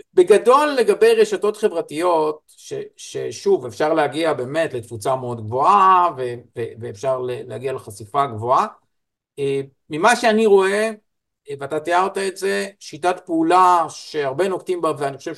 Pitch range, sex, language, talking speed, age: 135-215 Hz, male, Hebrew, 125 wpm, 50-69